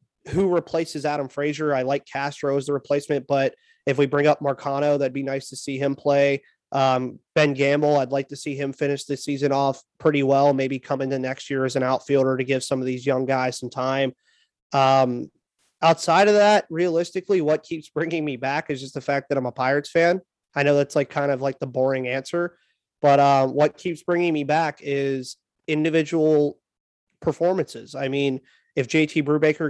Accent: American